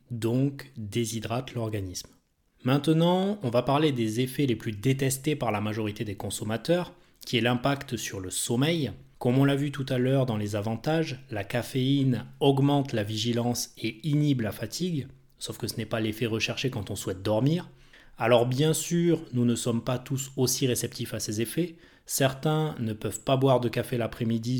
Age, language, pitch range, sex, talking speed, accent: 20-39, French, 115-140 Hz, male, 180 wpm, French